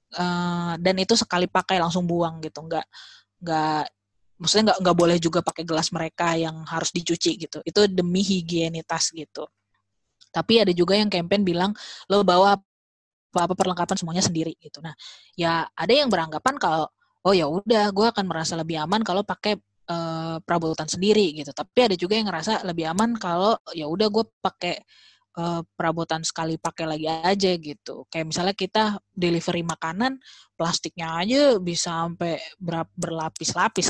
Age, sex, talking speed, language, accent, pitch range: 20-39, female, 155 wpm, Indonesian, native, 160-190 Hz